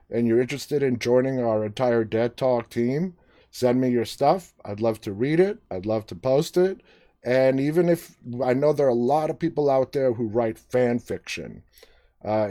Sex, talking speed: male, 200 wpm